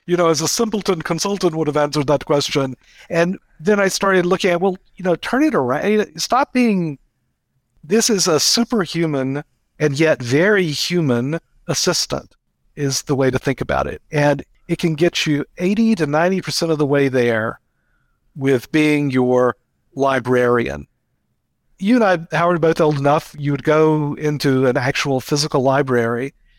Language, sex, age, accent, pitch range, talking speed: English, male, 50-69, American, 135-175 Hz, 160 wpm